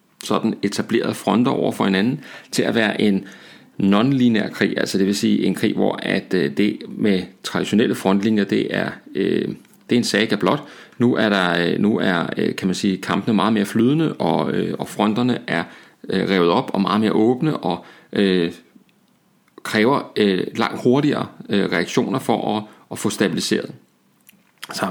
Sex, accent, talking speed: male, native, 150 wpm